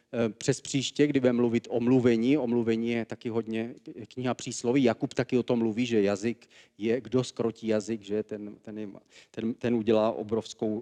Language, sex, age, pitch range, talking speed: Czech, male, 40-59, 115-135 Hz, 165 wpm